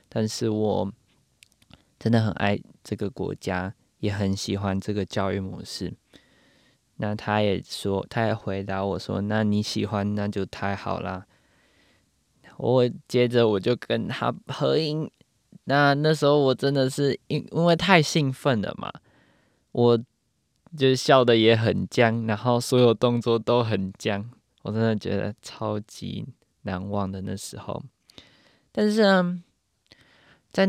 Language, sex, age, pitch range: Chinese, male, 20-39, 100-140 Hz